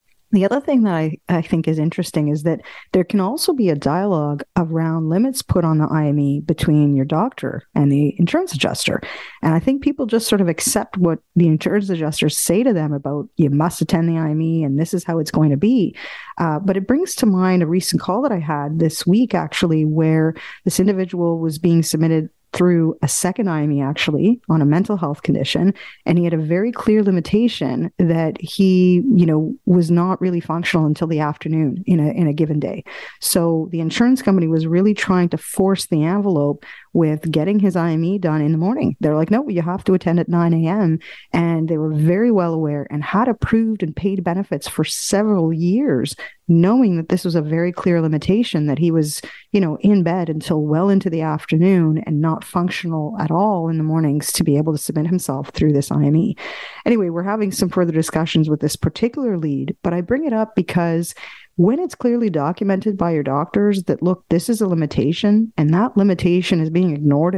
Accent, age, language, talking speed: American, 40-59, English, 205 wpm